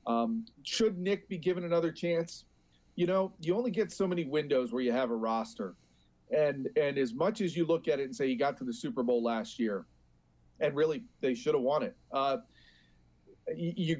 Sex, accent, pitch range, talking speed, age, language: male, American, 125-195 Hz, 205 wpm, 40-59, English